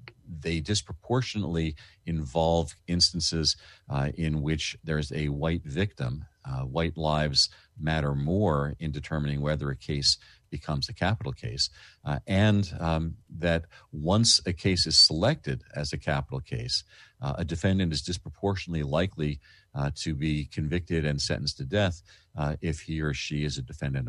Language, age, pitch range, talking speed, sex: English, 50-69, 75-90 Hz, 150 wpm, male